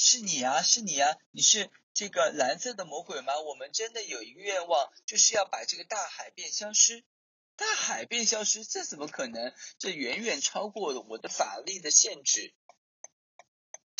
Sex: male